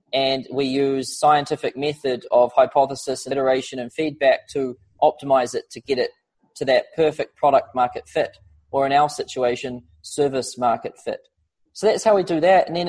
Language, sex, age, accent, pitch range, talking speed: English, male, 20-39, Australian, 130-170 Hz, 170 wpm